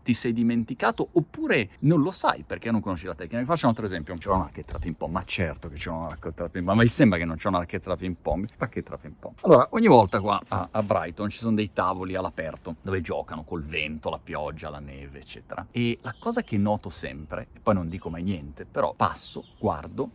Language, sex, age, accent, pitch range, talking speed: Italian, male, 40-59, native, 90-140 Hz, 235 wpm